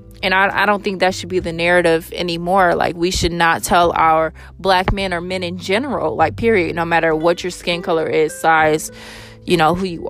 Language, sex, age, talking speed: English, female, 20-39, 220 wpm